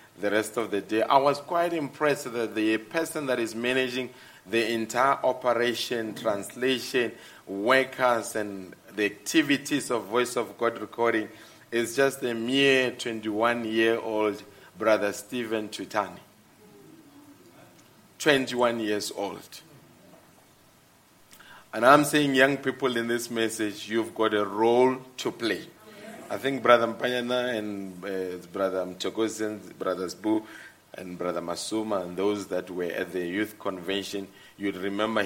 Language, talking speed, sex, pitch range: English, 135 wpm, male, 105-130 Hz